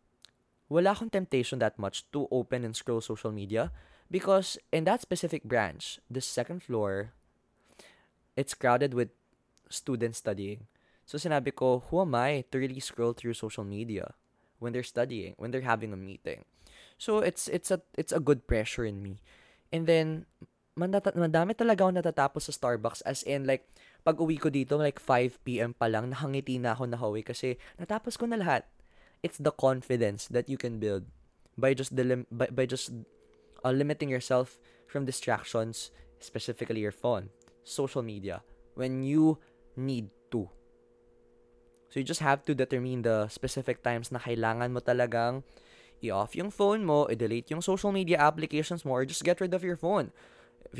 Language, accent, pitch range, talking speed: Filipino, native, 115-150 Hz, 165 wpm